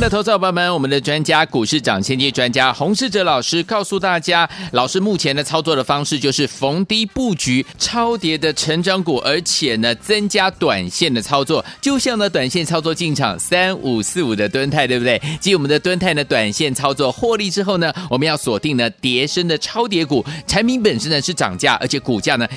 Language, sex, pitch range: Chinese, male, 140-195 Hz